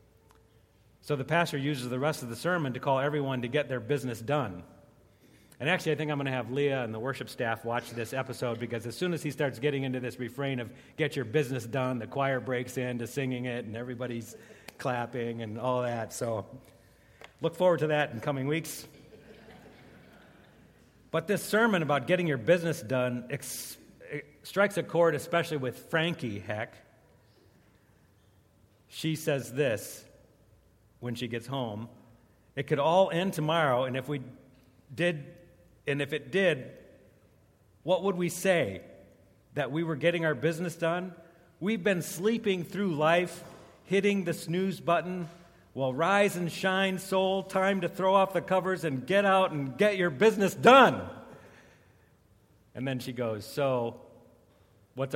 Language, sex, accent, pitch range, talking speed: English, male, American, 120-170 Hz, 160 wpm